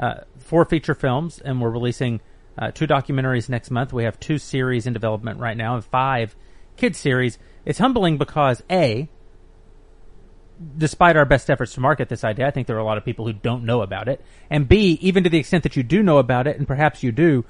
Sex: male